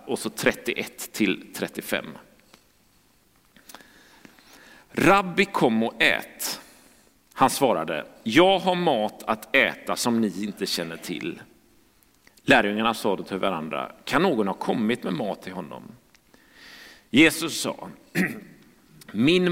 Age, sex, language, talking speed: 40-59, male, Swedish, 115 wpm